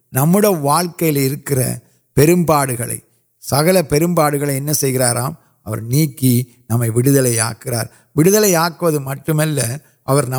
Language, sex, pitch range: Urdu, male, 135-175 Hz